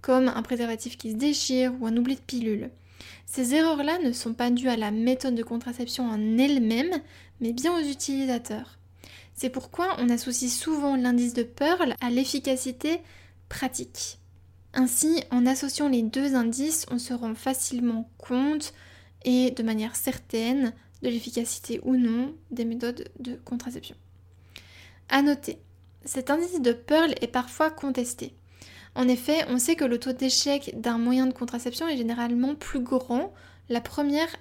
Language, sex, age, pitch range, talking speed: French, female, 10-29, 230-270 Hz, 155 wpm